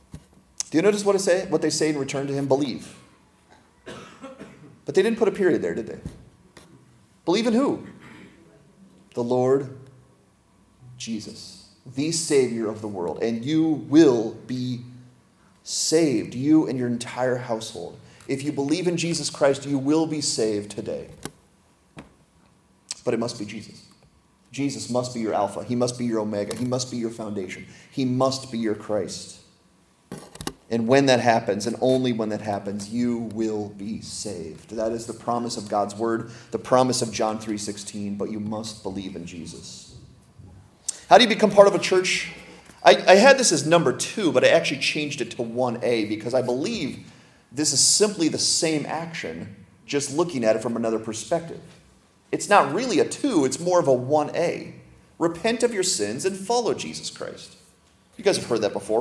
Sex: male